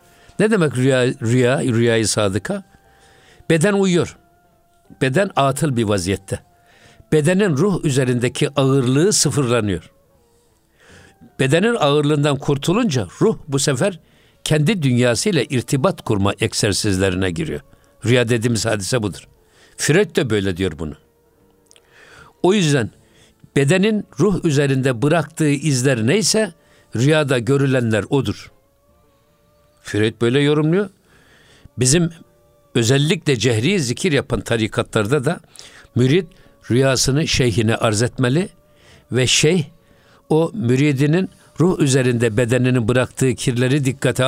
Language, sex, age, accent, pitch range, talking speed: Turkish, male, 60-79, native, 120-155 Hz, 100 wpm